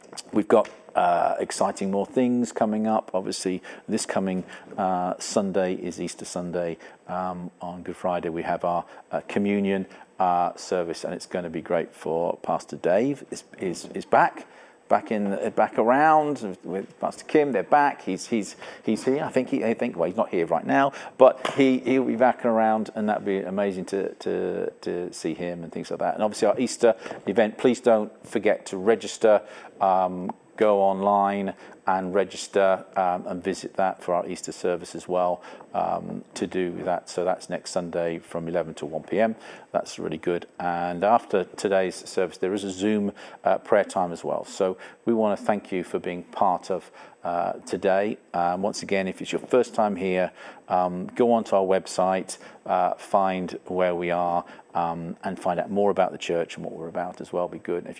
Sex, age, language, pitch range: male, 50-69, English, 90-110 Hz